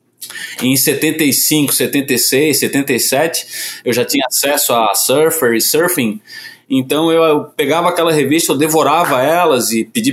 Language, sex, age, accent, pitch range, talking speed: Portuguese, male, 20-39, Brazilian, 135-200 Hz, 130 wpm